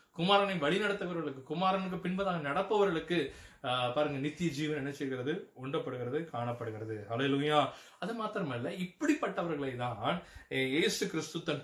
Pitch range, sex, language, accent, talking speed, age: 125-160 Hz, male, Tamil, native, 105 wpm, 20-39